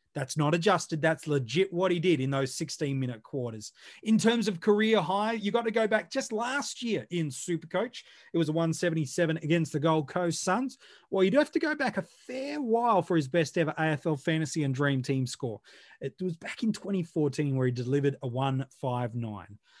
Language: English